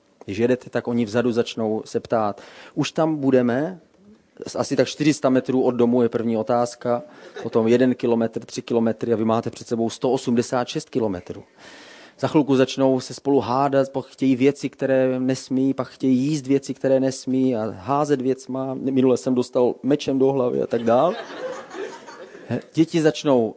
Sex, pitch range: male, 120-140 Hz